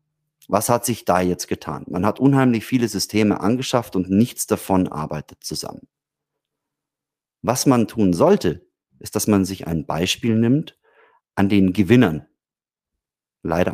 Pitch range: 90-110 Hz